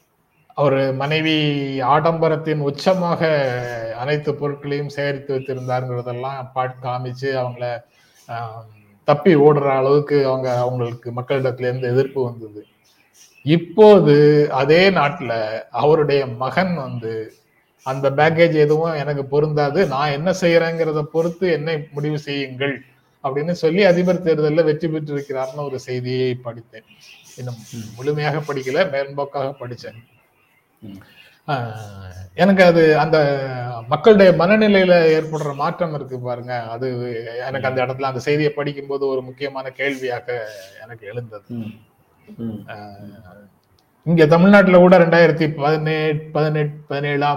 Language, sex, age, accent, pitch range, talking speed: Tamil, male, 30-49, native, 125-155 Hz, 95 wpm